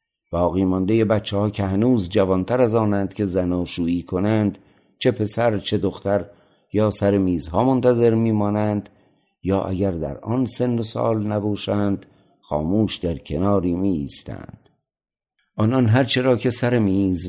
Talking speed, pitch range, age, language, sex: 140 wpm, 85-105 Hz, 50-69, Persian, male